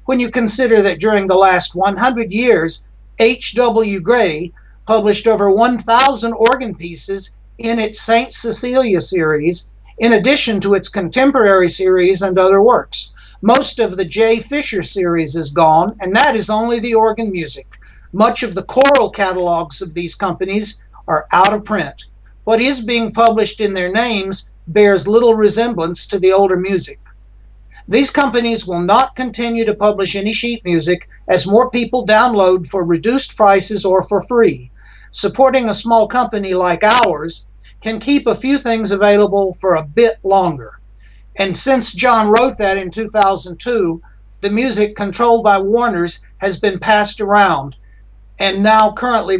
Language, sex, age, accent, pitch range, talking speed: English, male, 60-79, American, 185-230 Hz, 155 wpm